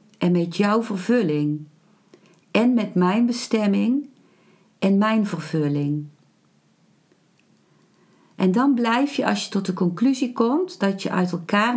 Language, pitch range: Dutch, 180-230 Hz